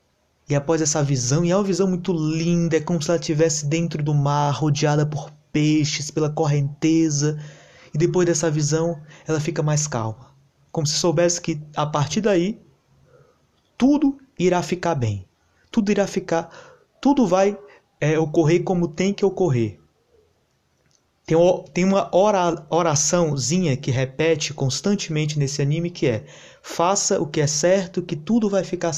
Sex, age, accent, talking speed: male, 20-39, Brazilian, 145 wpm